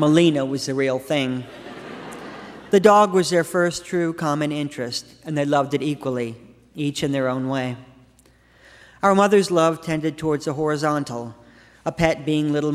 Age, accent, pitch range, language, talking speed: 40-59, American, 135-160 Hz, English, 160 wpm